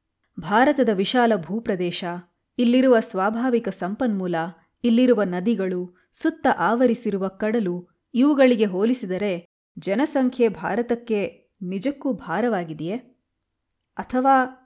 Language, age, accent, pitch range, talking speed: Kannada, 20-39, native, 195-255 Hz, 75 wpm